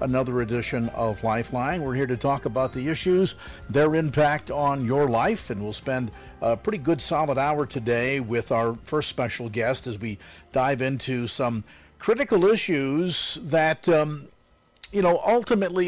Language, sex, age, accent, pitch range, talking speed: English, male, 50-69, American, 120-155 Hz, 160 wpm